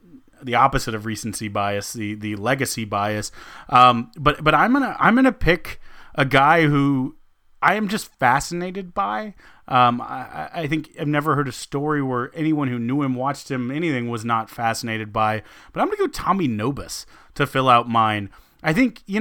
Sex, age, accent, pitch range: male, 30-49, American, 120-150 Hz